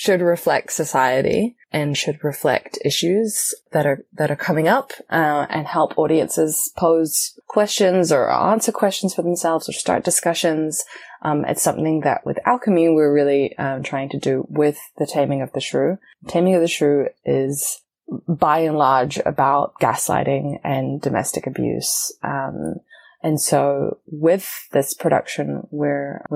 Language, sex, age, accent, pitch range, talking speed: English, female, 20-39, Australian, 140-175 Hz, 150 wpm